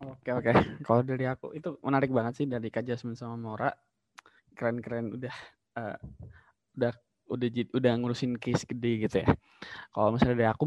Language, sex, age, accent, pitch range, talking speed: Indonesian, male, 20-39, native, 110-130 Hz, 180 wpm